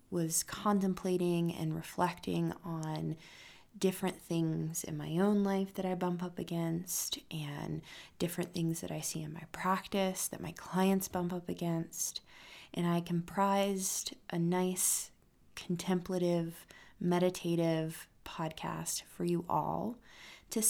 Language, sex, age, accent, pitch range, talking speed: English, female, 20-39, American, 160-185 Hz, 125 wpm